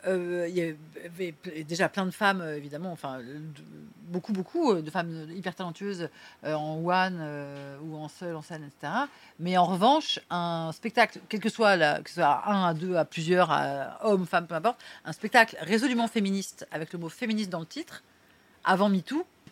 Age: 40-59